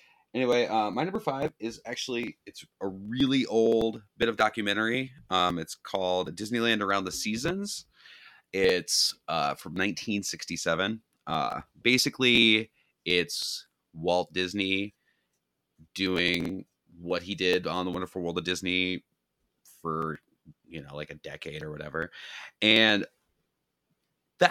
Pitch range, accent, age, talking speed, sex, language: 85-120 Hz, American, 30-49, 120 wpm, male, English